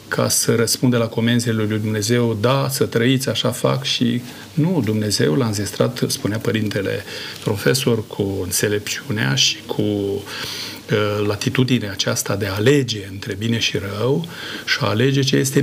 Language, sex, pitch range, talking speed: Romanian, male, 110-130 Hz, 145 wpm